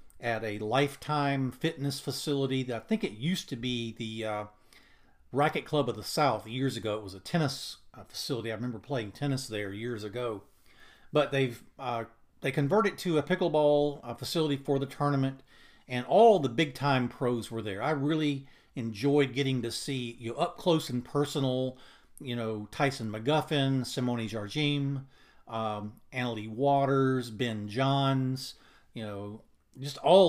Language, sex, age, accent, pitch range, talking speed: English, male, 40-59, American, 120-145 Hz, 160 wpm